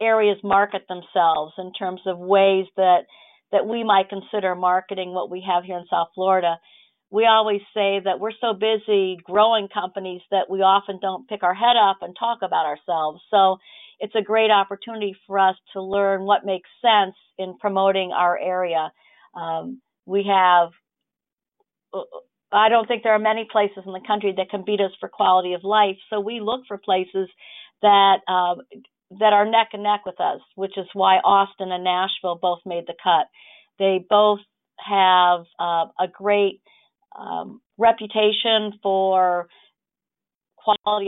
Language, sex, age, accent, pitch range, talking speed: English, female, 50-69, American, 185-215 Hz, 165 wpm